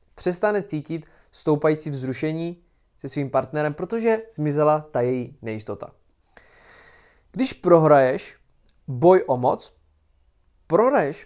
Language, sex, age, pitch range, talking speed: Czech, male, 20-39, 135-170 Hz, 95 wpm